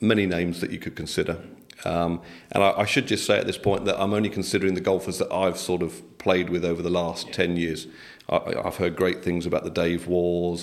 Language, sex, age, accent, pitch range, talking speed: English, male, 40-59, British, 85-95 Hz, 235 wpm